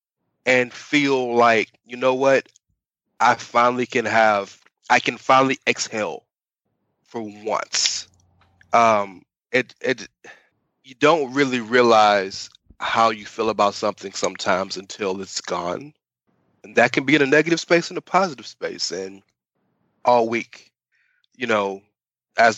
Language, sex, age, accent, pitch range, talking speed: English, male, 20-39, American, 105-130 Hz, 135 wpm